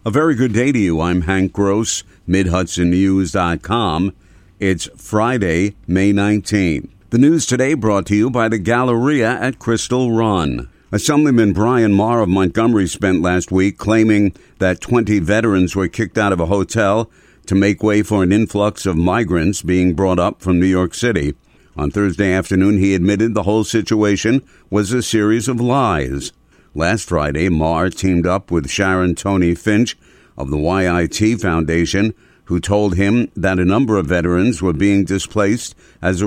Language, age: English, 50-69